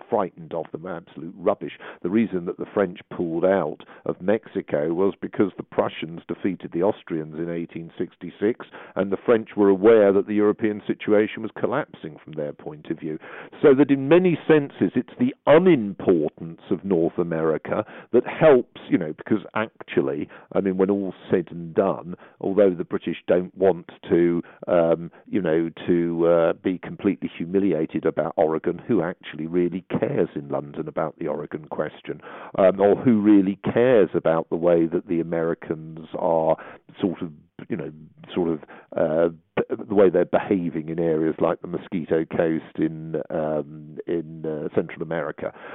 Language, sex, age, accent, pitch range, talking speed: English, male, 50-69, British, 80-100 Hz, 165 wpm